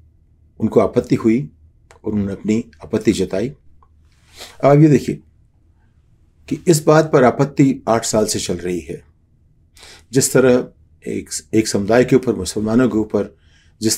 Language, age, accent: Hindi, 50-69, native